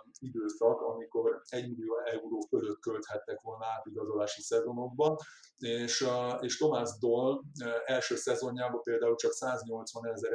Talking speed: 115 wpm